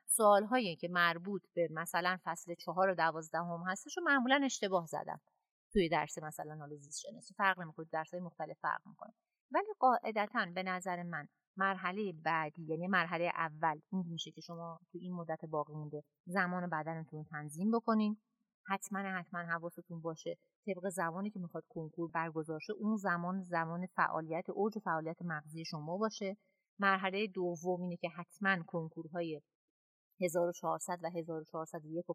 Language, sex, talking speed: Persian, female, 150 wpm